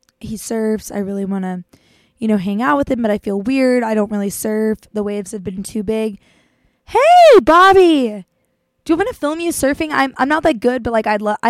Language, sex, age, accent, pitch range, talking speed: English, female, 20-39, American, 210-255 Hz, 230 wpm